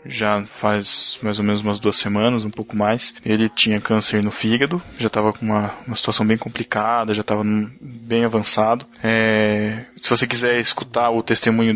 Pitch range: 110-120 Hz